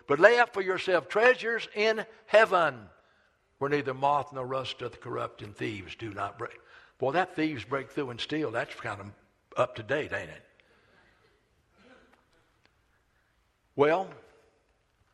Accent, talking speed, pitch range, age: American, 145 wpm, 120-170 Hz, 60-79